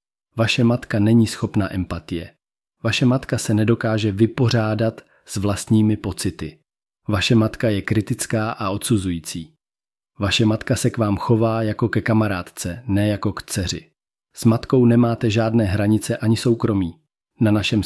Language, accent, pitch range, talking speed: Czech, native, 100-115 Hz, 140 wpm